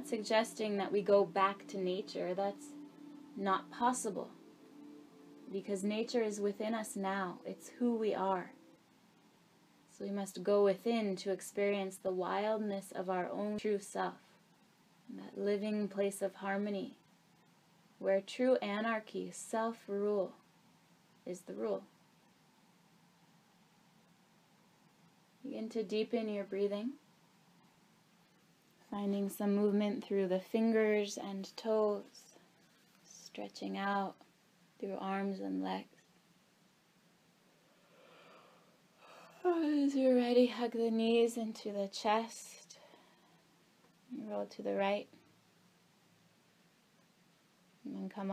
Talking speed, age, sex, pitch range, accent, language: 100 wpm, 20-39, female, 190-220 Hz, American, English